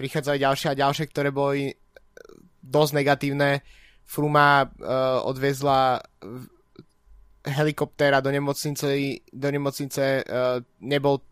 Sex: male